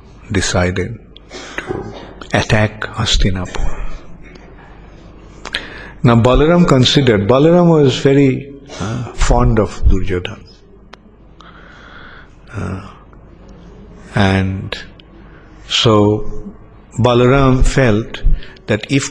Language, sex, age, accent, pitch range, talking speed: English, male, 50-69, Indian, 100-125 Hz, 65 wpm